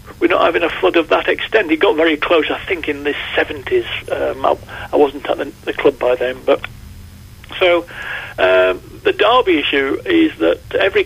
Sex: male